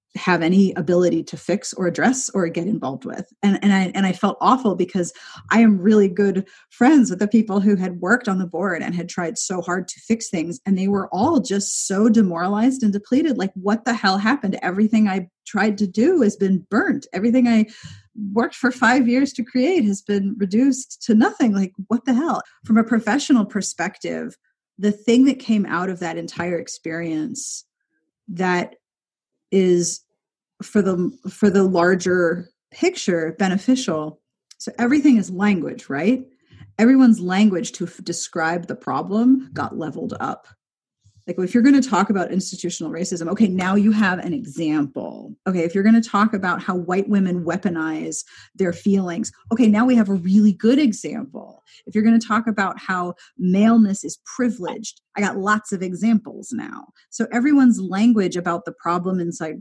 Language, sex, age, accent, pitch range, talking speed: English, female, 30-49, American, 180-230 Hz, 175 wpm